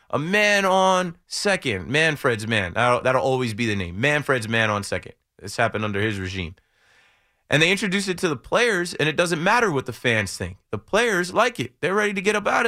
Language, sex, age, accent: English, male, 20-39, American